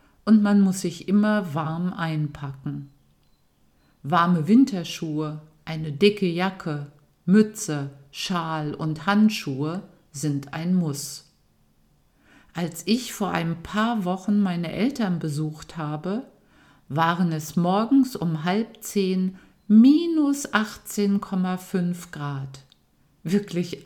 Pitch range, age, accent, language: 150-200 Hz, 50-69, German, German